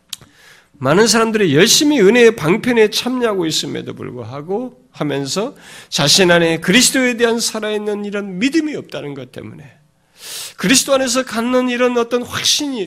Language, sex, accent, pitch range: Korean, male, native, 140-225 Hz